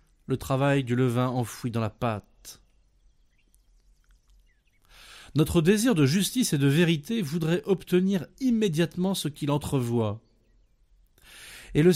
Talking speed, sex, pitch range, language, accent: 115 wpm, male, 120-180 Hz, French, French